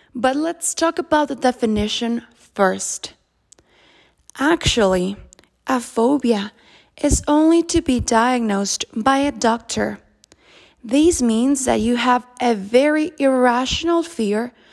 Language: English